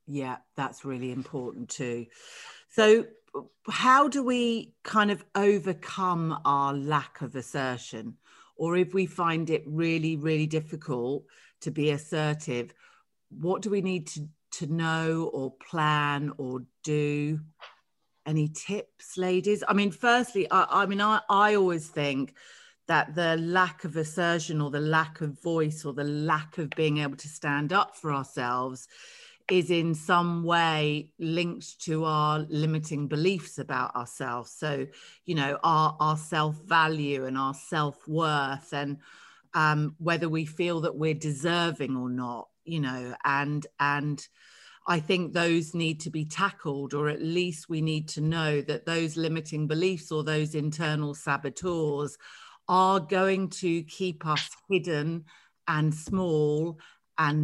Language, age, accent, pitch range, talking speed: English, 40-59, British, 145-175 Hz, 145 wpm